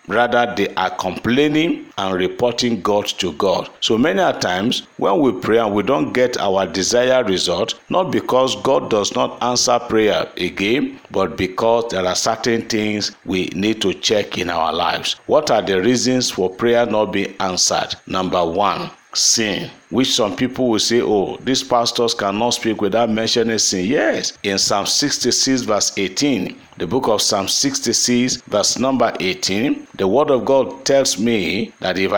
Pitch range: 105-130 Hz